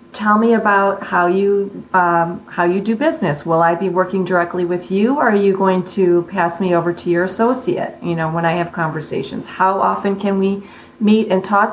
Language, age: English, 40-59